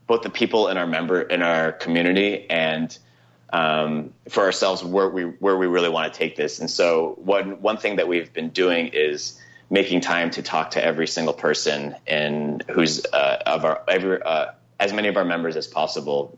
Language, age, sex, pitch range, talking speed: English, 30-49, male, 70-85 Hz, 200 wpm